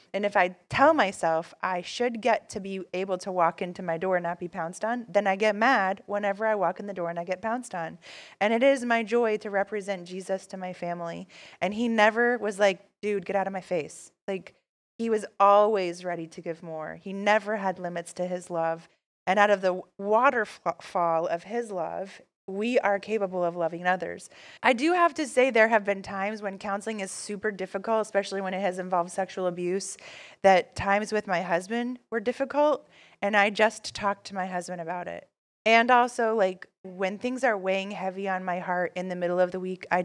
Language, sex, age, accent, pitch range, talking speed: English, female, 20-39, American, 180-215 Hz, 215 wpm